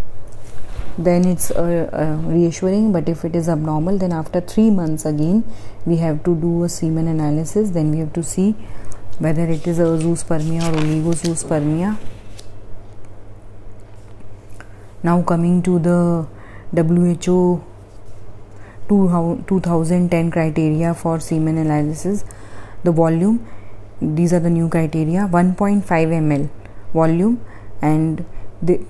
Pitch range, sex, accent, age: 150-180 Hz, female, native, 30-49